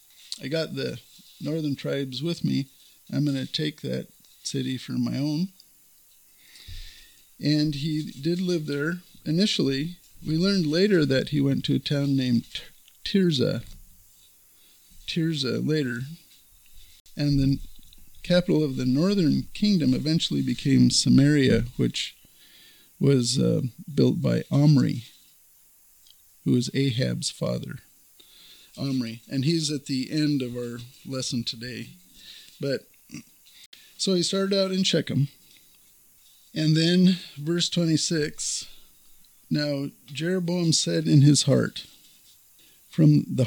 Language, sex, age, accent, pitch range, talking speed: English, male, 50-69, American, 125-165 Hz, 115 wpm